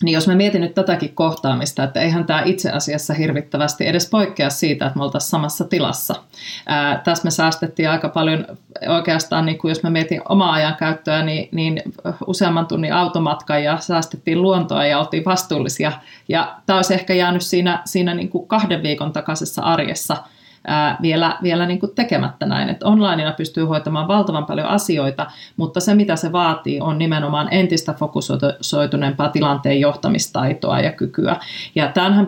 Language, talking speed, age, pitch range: Finnish, 165 wpm, 30-49, 150-170 Hz